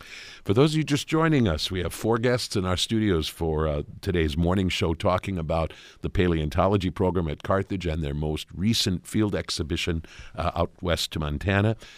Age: 50-69